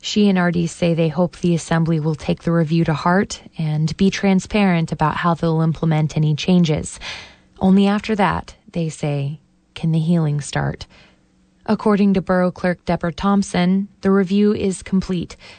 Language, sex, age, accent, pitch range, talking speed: English, female, 20-39, American, 160-190 Hz, 160 wpm